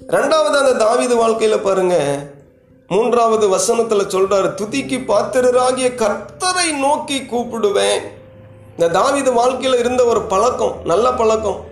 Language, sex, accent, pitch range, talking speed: Tamil, male, native, 170-255 Hz, 95 wpm